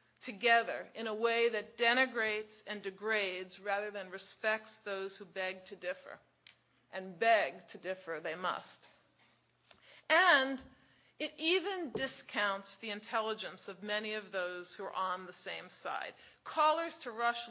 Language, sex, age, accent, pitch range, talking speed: English, female, 40-59, American, 200-250 Hz, 140 wpm